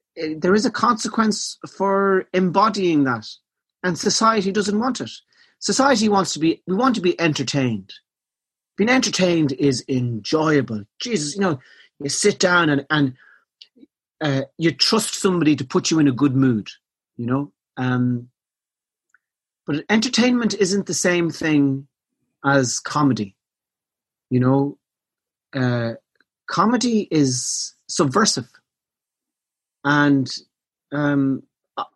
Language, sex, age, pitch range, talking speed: English, male, 40-59, 140-195 Hz, 120 wpm